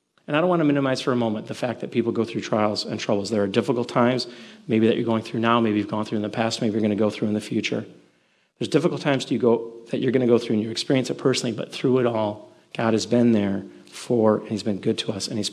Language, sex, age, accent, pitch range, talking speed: English, male, 40-59, American, 110-135 Hz, 300 wpm